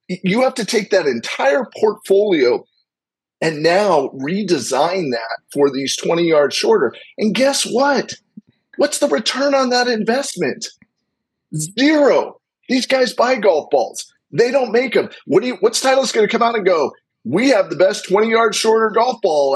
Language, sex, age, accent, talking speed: English, male, 40-59, American, 170 wpm